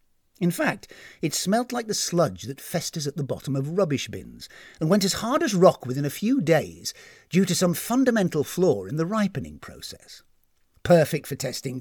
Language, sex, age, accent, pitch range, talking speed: English, male, 50-69, British, 140-210 Hz, 190 wpm